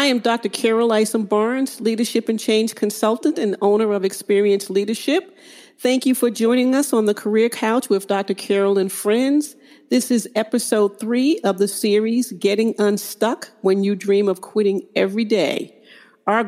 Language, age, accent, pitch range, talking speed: English, 50-69, American, 195-235 Hz, 165 wpm